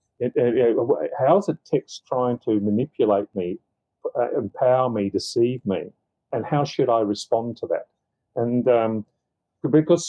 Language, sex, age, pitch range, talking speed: English, male, 40-59, 105-130 Hz, 135 wpm